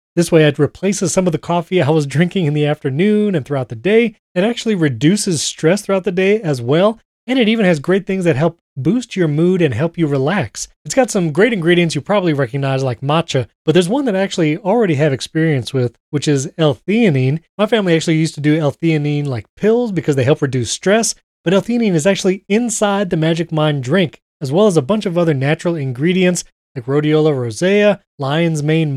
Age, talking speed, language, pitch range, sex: 30-49, 210 wpm, English, 150-195 Hz, male